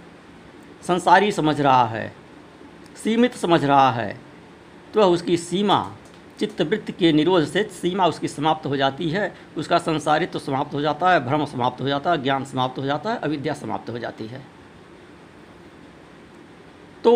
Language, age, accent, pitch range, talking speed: Hindi, 60-79, native, 145-200 Hz, 155 wpm